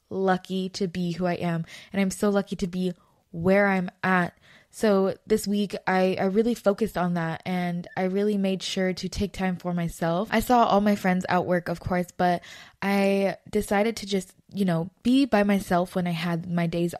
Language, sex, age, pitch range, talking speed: English, female, 20-39, 175-200 Hz, 205 wpm